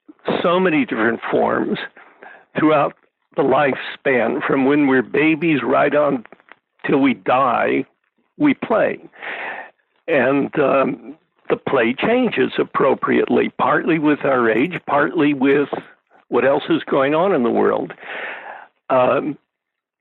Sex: male